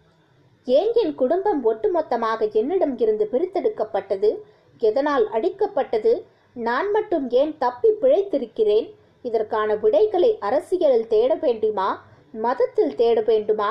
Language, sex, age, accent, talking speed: Tamil, female, 20-39, native, 90 wpm